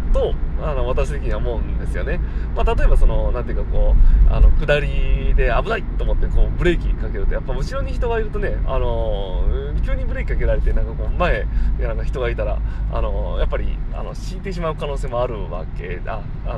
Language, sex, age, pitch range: Japanese, male, 20-39, 115-145 Hz